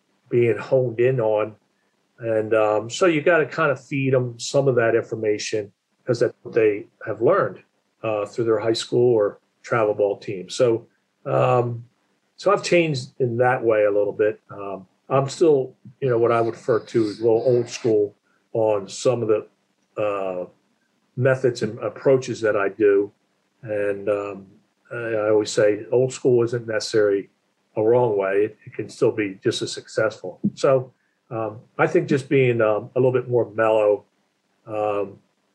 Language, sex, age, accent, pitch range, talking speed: English, male, 50-69, American, 105-130 Hz, 175 wpm